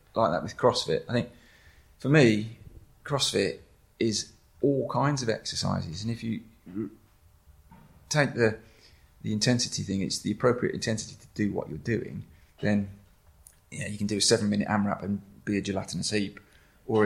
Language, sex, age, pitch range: English, male, 30-49, 95-110 Hz